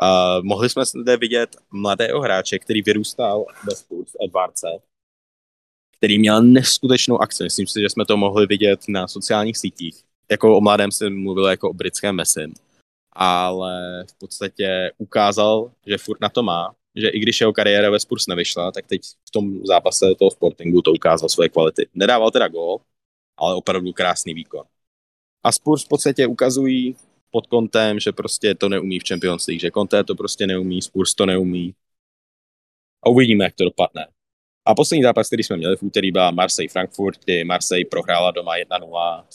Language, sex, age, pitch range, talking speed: English, male, 20-39, 90-115 Hz, 170 wpm